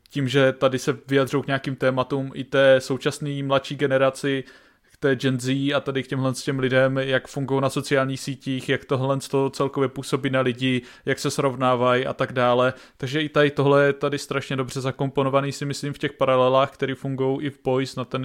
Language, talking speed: Czech, 205 wpm